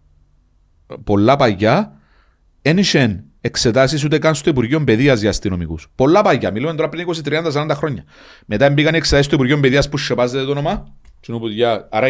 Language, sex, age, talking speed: Greek, male, 40-59, 150 wpm